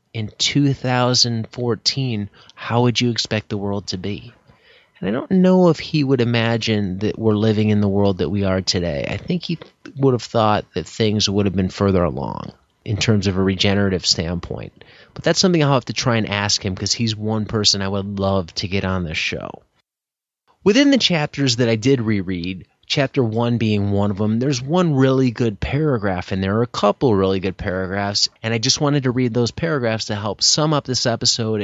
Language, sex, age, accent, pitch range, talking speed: English, male, 30-49, American, 105-130 Hz, 205 wpm